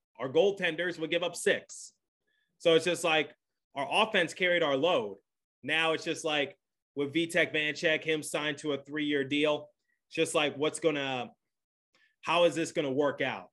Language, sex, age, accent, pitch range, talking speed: English, male, 20-39, American, 140-165 Hz, 180 wpm